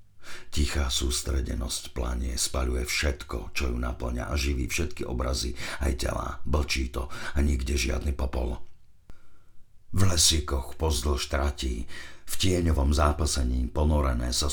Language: Slovak